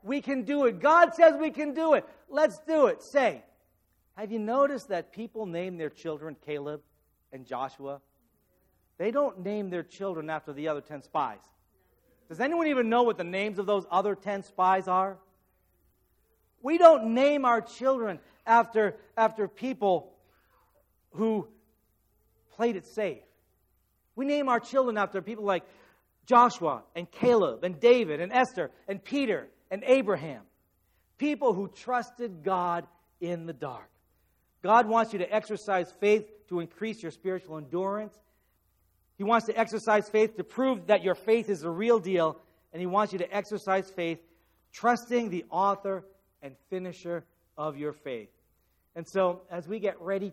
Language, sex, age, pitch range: English, male, 40-59, 160-230 Hz